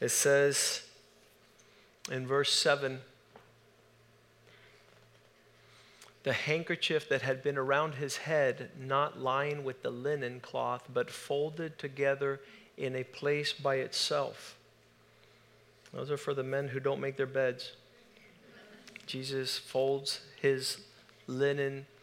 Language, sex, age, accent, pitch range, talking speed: English, male, 40-59, American, 135-150 Hz, 110 wpm